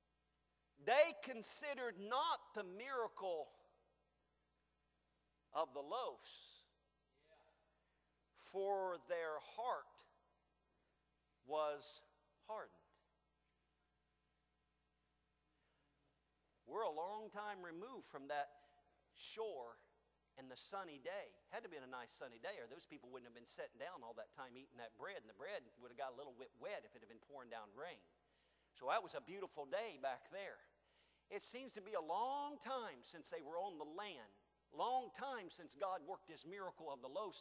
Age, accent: 50-69, American